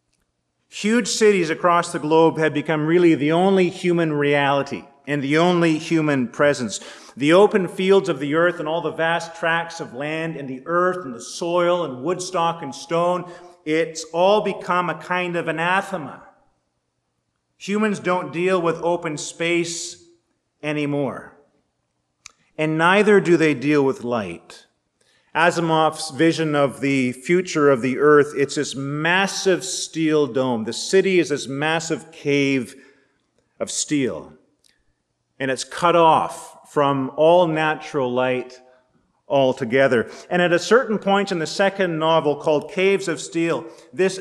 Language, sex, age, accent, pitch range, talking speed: English, male, 40-59, American, 145-180 Hz, 145 wpm